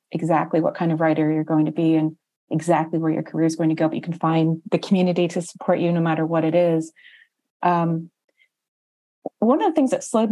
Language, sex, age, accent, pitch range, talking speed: English, female, 30-49, American, 160-190 Hz, 225 wpm